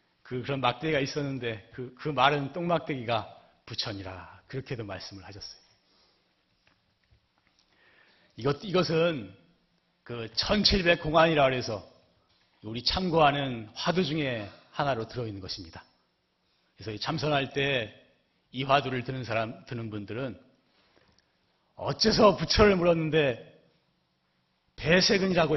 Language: Korean